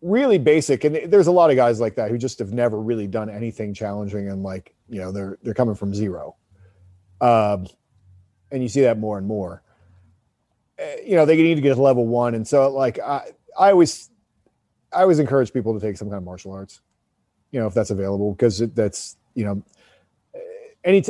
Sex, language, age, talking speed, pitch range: male, English, 40-59, 205 wpm, 110-140 Hz